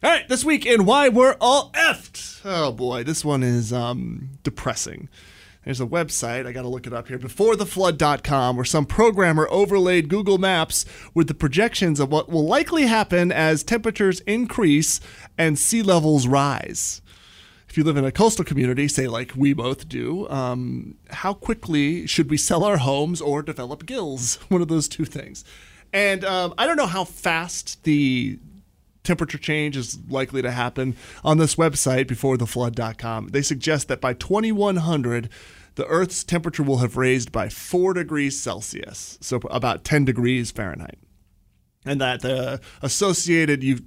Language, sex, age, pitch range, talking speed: English, male, 30-49, 125-170 Hz, 160 wpm